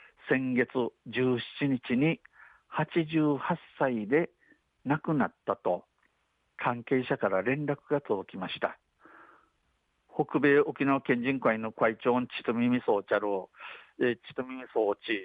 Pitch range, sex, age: 120-145 Hz, male, 50-69